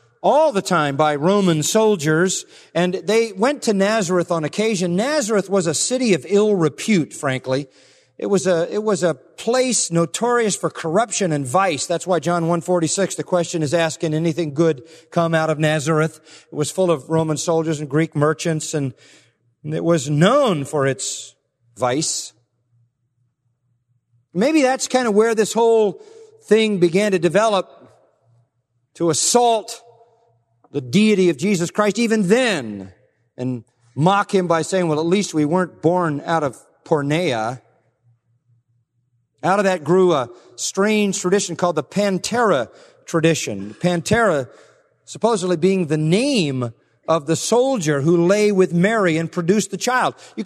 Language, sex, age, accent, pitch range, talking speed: English, male, 40-59, American, 150-205 Hz, 150 wpm